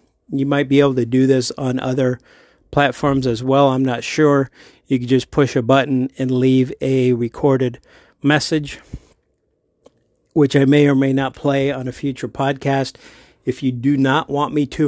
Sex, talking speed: male, 180 wpm